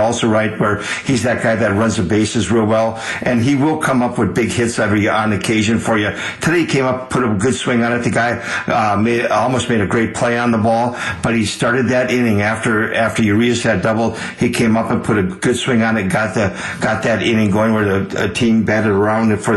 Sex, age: male, 50-69